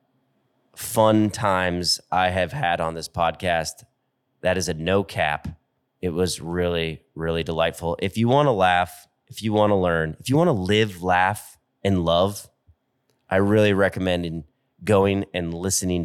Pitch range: 90-110 Hz